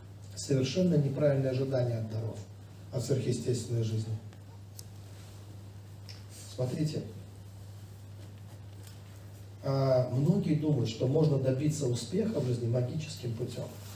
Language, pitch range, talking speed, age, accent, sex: Russian, 100-140 Hz, 85 wpm, 40-59, native, male